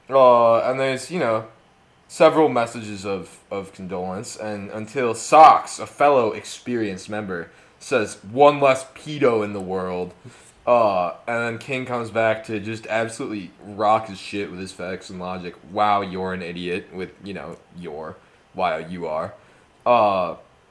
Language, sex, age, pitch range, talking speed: English, male, 20-39, 105-160 Hz, 155 wpm